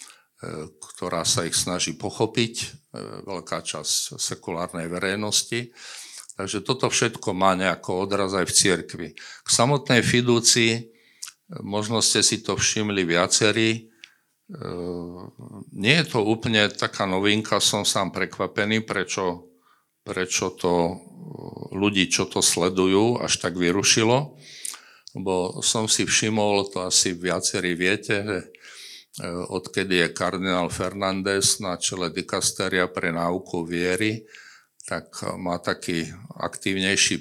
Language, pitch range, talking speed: Slovak, 90-105 Hz, 110 wpm